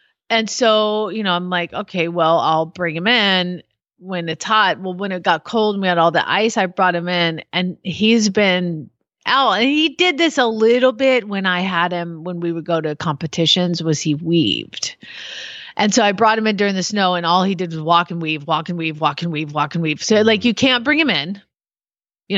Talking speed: 235 wpm